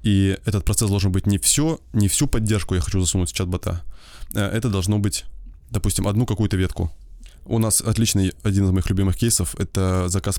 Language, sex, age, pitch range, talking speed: Russian, male, 20-39, 90-110 Hz, 190 wpm